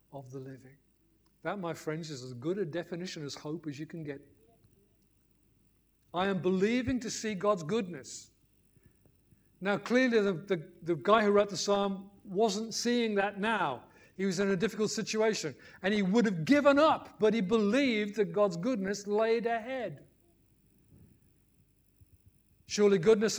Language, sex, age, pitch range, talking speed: English, male, 50-69, 155-210 Hz, 155 wpm